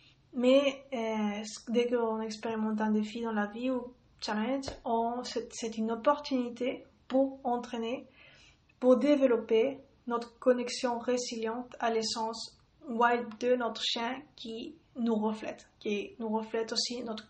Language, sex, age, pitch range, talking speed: French, female, 30-49, 225-250 Hz, 130 wpm